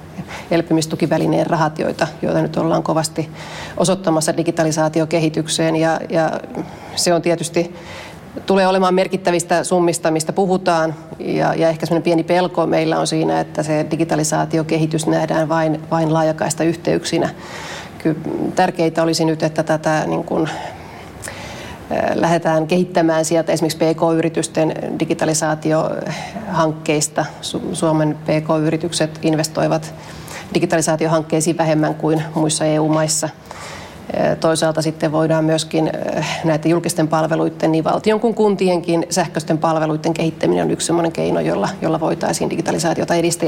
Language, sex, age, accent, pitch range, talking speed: Finnish, female, 30-49, native, 160-170 Hz, 110 wpm